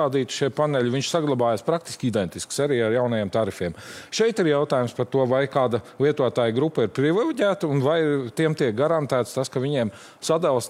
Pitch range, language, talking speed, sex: 115-145 Hz, English, 170 wpm, male